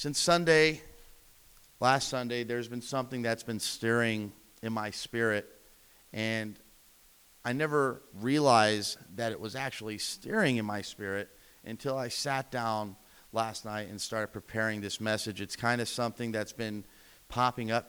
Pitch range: 105-130 Hz